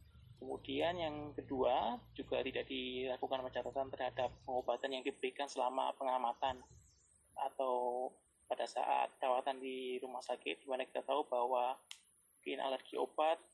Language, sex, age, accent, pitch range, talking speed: Indonesian, male, 20-39, native, 125-140 Hz, 125 wpm